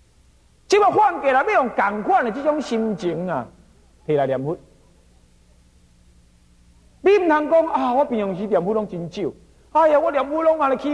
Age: 50-69